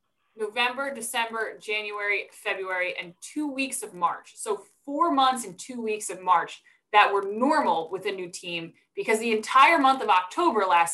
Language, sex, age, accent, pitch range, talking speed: English, female, 20-39, American, 190-260 Hz, 170 wpm